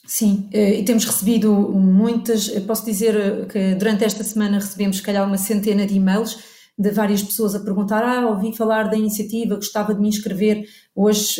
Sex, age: female, 30-49